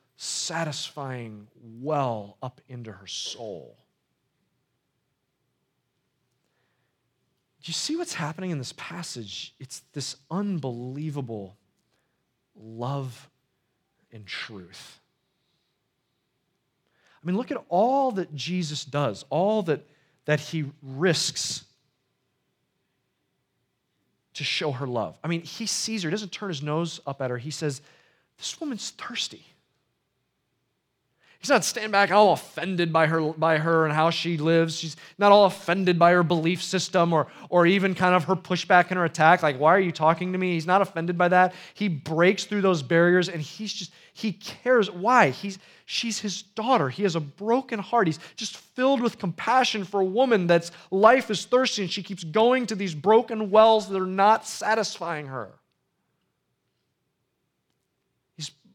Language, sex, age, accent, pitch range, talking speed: English, male, 30-49, American, 150-200 Hz, 150 wpm